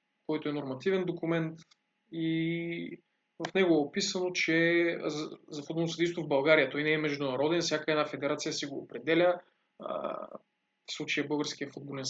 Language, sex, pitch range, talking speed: Bulgarian, male, 150-190 Hz, 145 wpm